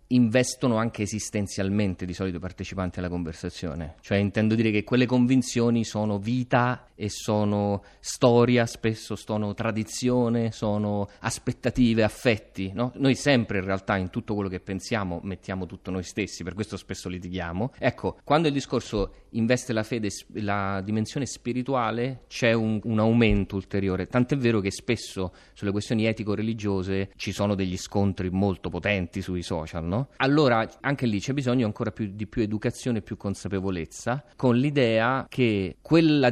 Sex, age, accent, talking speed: male, 30-49, native, 150 wpm